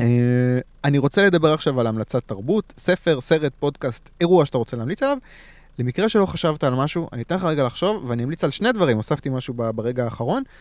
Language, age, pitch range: Hebrew, 20-39, 125-170 Hz